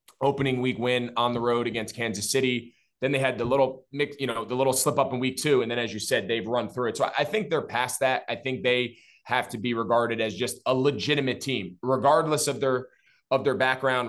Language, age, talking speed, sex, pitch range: English, 20-39, 245 wpm, male, 115-135 Hz